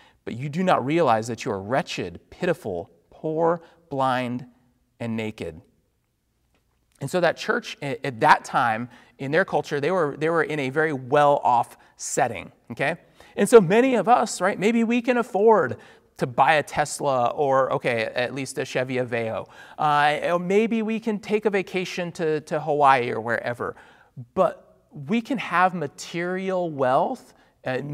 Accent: American